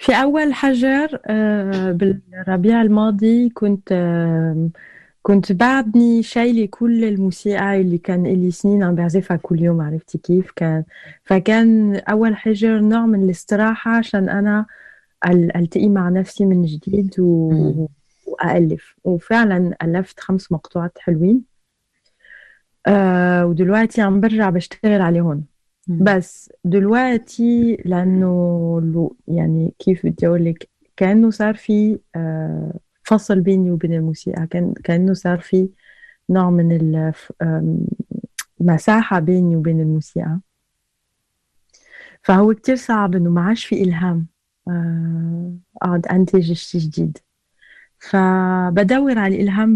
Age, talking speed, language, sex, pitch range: 20-39, 100 wpm, Arabic, female, 175-215 Hz